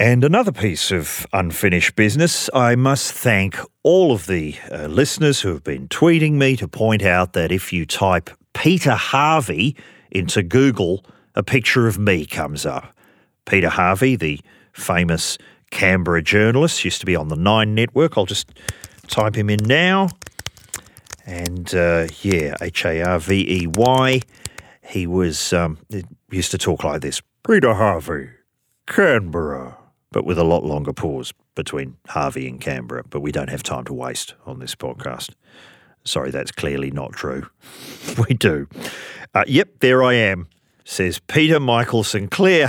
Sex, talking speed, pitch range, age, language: male, 150 wpm, 85-120 Hz, 40-59, English